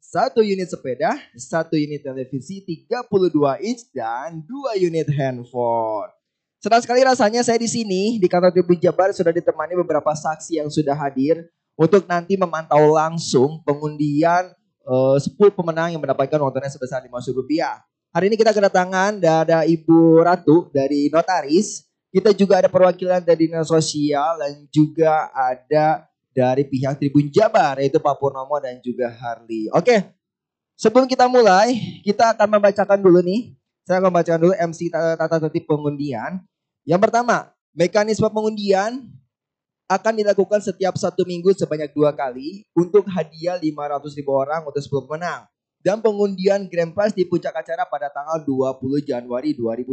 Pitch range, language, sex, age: 145-195 Hz, Indonesian, male, 20-39